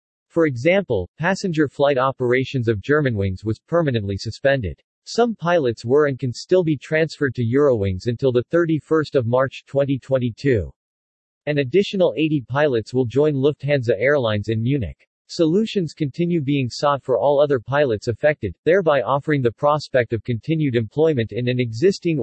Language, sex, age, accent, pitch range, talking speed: English, male, 40-59, American, 120-150 Hz, 145 wpm